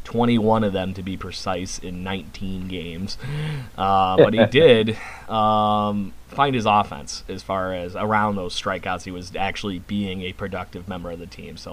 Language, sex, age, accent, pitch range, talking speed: English, male, 30-49, American, 95-110 Hz, 175 wpm